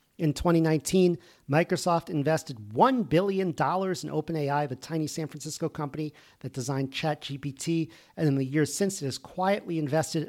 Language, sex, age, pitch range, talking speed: English, male, 50-69, 140-175 Hz, 145 wpm